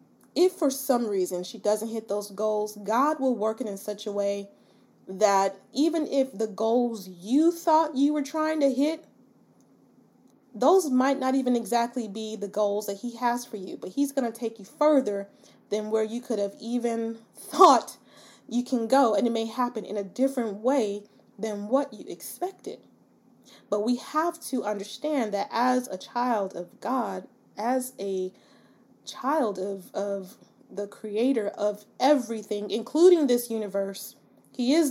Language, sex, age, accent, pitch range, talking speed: English, female, 20-39, American, 205-270 Hz, 165 wpm